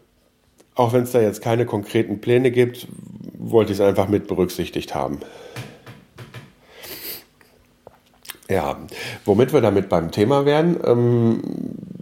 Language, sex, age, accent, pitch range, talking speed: German, male, 50-69, German, 90-125 Hz, 115 wpm